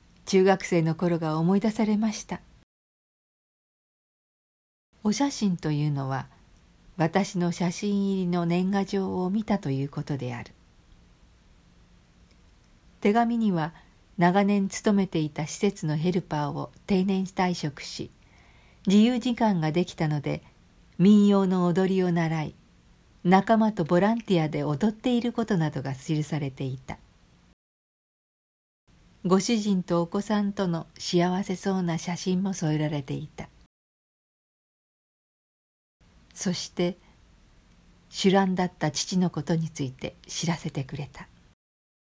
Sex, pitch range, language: female, 150-195 Hz, Japanese